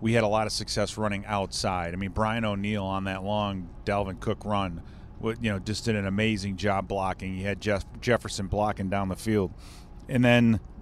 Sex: male